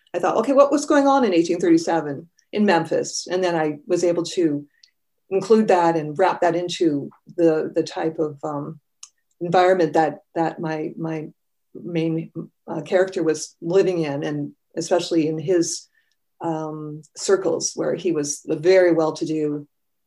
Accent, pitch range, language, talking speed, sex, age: American, 165-220 Hz, English, 155 wpm, female, 40-59